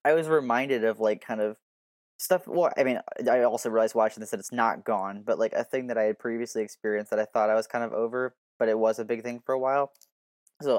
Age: 10-29